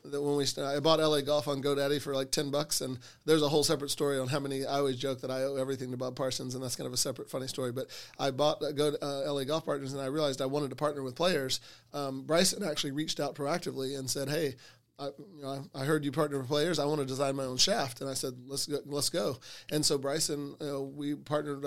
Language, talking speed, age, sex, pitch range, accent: English, 250 wpm, 30-49, male, 135-150 Hz, American